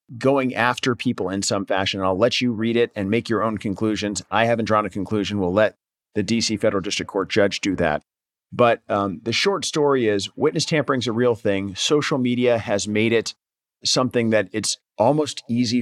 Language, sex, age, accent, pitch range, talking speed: English, male, 40-59, American, 100-125 Hz, 205 wpm